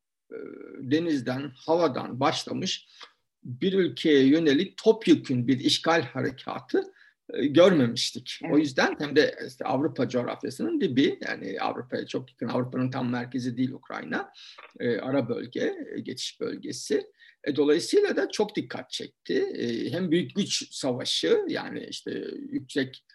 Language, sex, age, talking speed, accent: Turkish, male, 50-69, 130 wpm, native